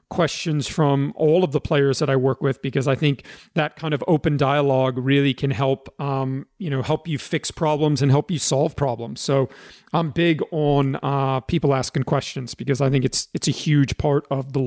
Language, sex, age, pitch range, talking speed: English, male, 40-59, 140-160 Hz, 210 wpm